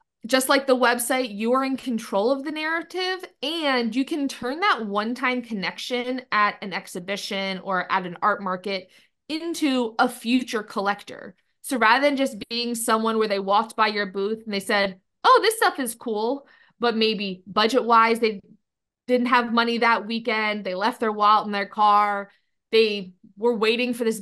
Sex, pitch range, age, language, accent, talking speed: female, 205-255 Hz, 20-39, English, American, 175 wpm